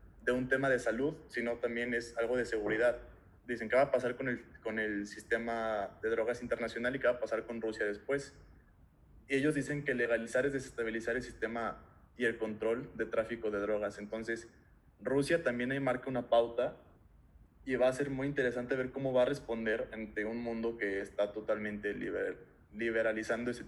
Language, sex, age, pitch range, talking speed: Spanish, male, 20-39, 110-130 Hz, 190 wpm